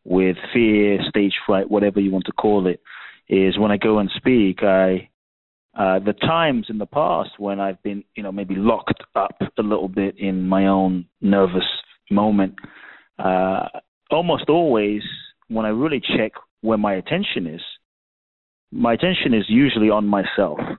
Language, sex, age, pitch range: English, male, 30-49, 100-115 Hz